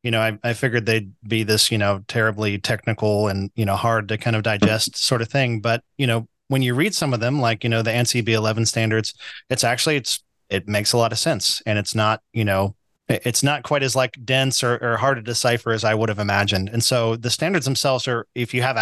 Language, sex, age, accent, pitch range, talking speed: English, male, 30-49, American, 110-125 Hz, 245 wpm